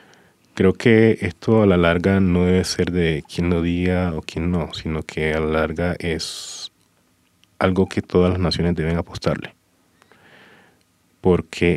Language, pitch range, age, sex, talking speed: English, 80-95 Hz, 30-49, male, 155 wpm